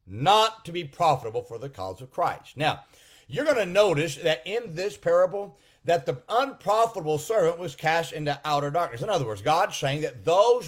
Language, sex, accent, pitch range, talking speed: English, male, American, 145-190 Hz, 190 wpm